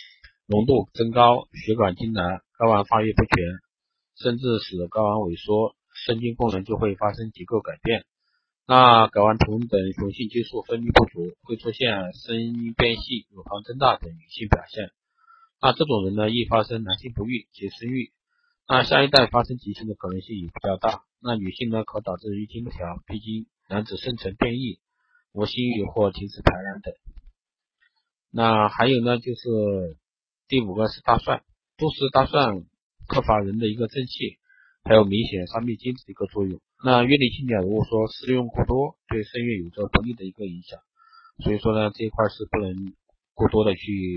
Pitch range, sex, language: 100-125 Hz, male, Chinese